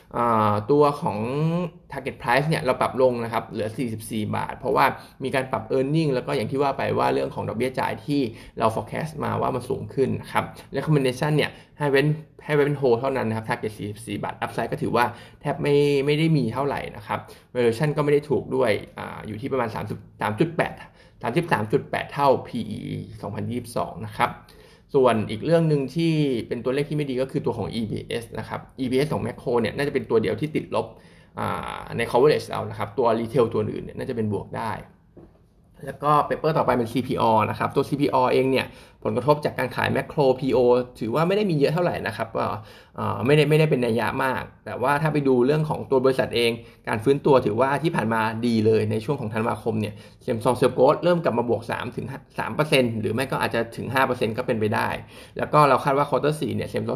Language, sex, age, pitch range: Thai, male, 20-39, 110-145 Hz